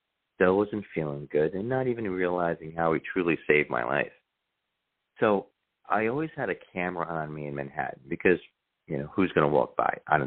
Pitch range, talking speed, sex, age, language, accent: 75-85 Hz, 205 wpm, male, 40-59, English, American